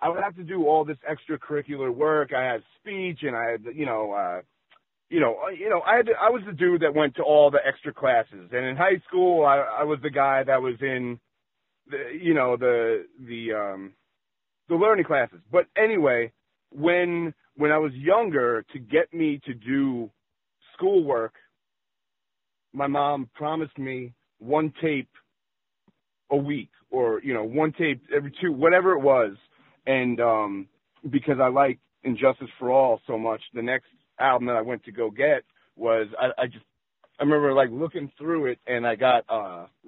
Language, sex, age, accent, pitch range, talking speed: English, male, 30-49, American, 125-165 Hz, 180 wpm